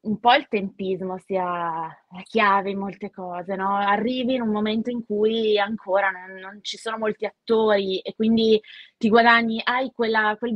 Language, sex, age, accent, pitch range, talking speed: Italian, female, 20-39, native, 195-245 Hz, 175 wpm